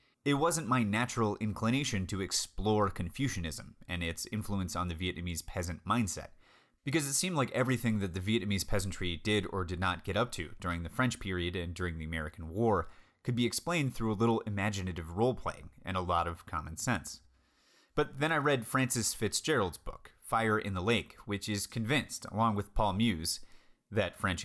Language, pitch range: English, 90-120 Hz